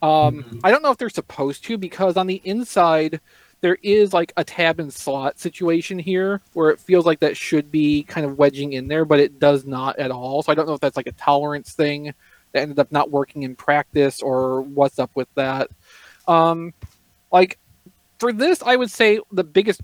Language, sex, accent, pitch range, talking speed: English, male, American, 145-180 Hz, 210 wpm